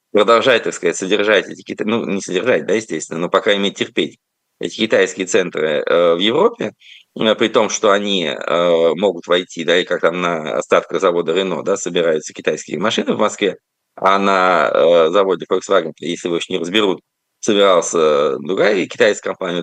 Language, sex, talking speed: Russian, male, 165 wpm